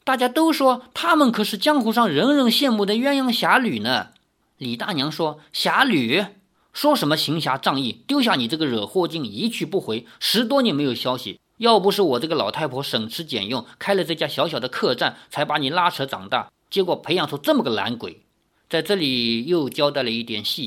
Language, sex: Chinese, male